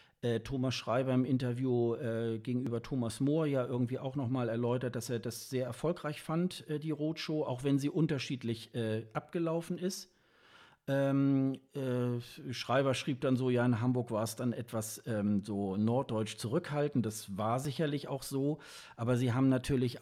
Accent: German